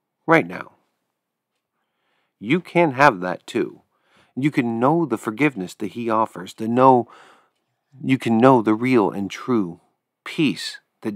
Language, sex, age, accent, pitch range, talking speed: English, male, 40-59, American, 100-135 Hz, 140 wpm